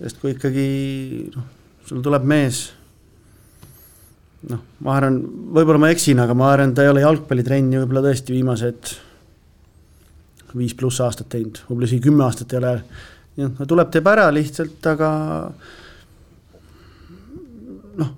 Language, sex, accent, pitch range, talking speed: English, male, Finnish, 105-145 Hz, 135 wpm